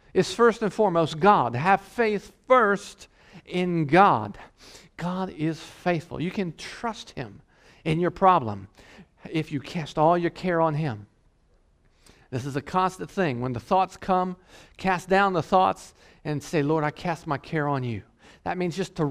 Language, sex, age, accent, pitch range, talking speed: English, male, 50-69, American, 140-190 Hz, 170 wpm